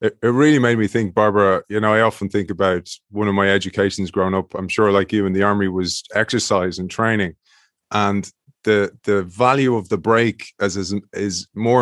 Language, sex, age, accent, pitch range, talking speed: English, male, 30-49, Irish, 100-115 Hz, 205 wpm